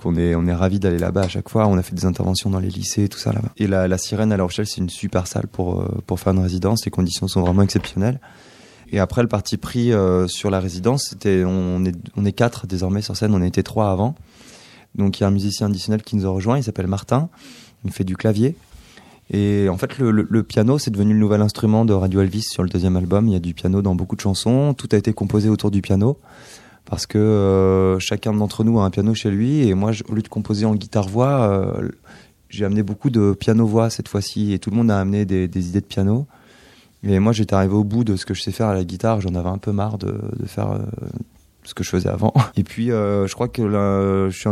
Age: 20-39